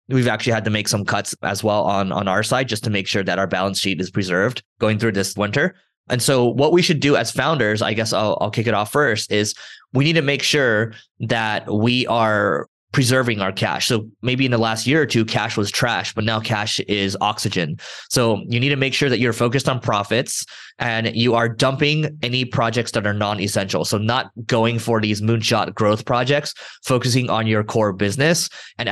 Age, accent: 20-39, American